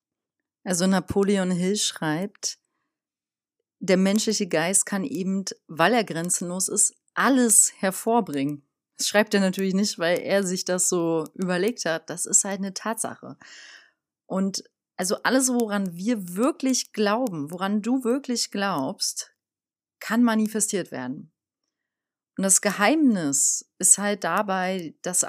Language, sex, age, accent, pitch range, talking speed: German, female, 30-49, German, 175-210 Hz, 125 wpm